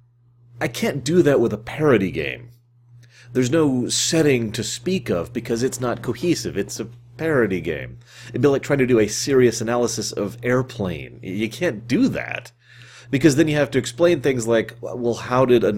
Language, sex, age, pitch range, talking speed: English, male, 30-49, 115-125 Hz, 185 wpm